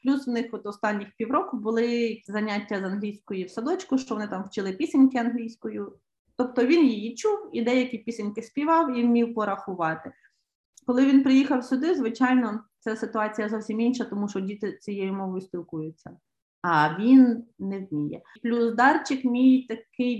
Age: 30-49